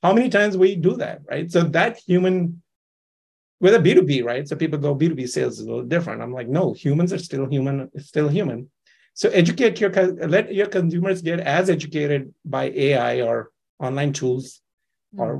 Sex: male